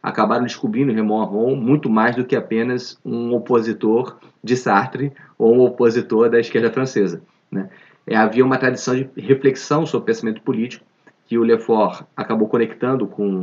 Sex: male